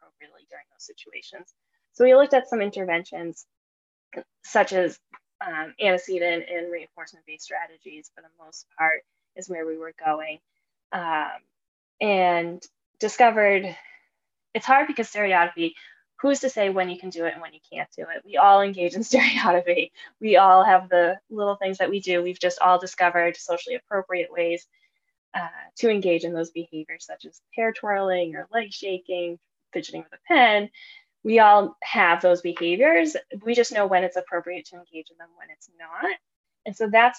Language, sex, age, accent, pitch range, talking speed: English, female, 10-29, American, 175-240 Hz, 175 wpm